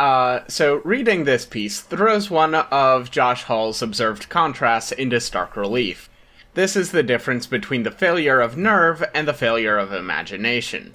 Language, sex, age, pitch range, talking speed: English, male, 30-49, 110-150 Hz, 160 wpm